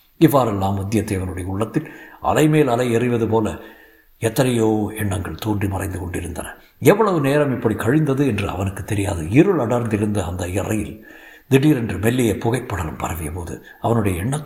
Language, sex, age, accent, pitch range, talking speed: Tamil, male, 60-79, native, 100-130 Hz, 130 wpm